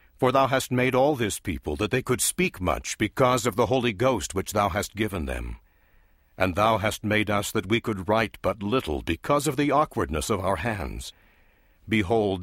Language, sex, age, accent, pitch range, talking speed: English, male, 60-79, American, 95-125 Hz, 200 wpm